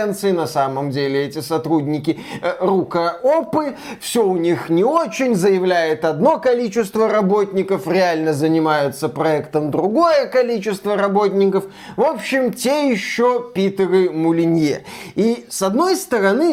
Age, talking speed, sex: 20-39, 115 wpm, male